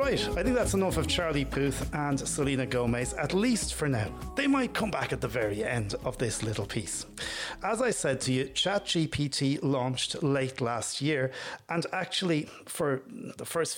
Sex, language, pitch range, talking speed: male, English, 120-155 Hz, 185 wpm